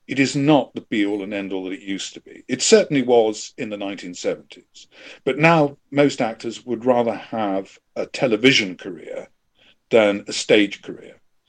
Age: 50-69